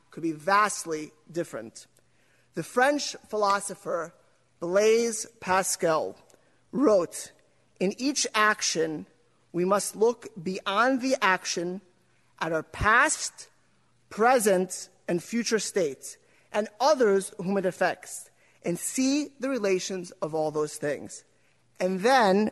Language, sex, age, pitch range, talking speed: English, male, 30-49, 185-240 Hz, 110 wpm